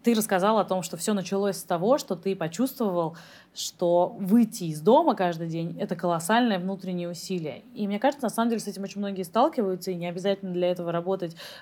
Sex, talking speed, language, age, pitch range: female, 205 wpm, Russian, 20-39, 175-210 Hz